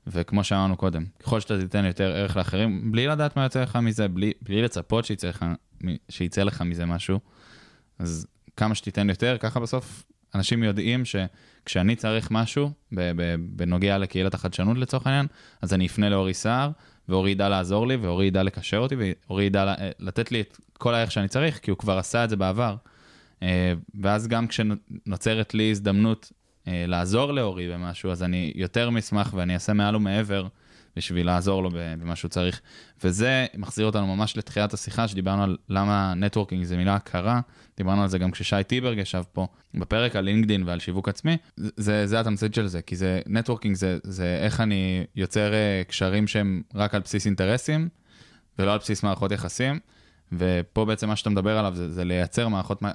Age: 20-39